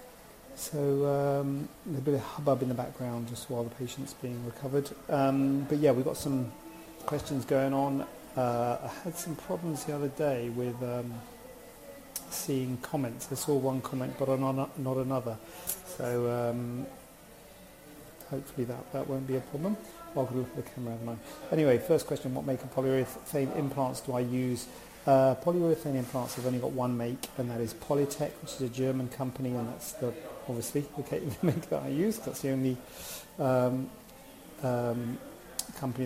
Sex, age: male, 40-59